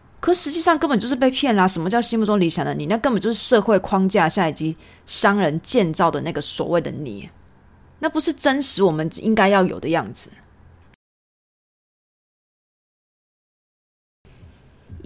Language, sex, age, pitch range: Chinese, female, 20-39, 155-215 Hz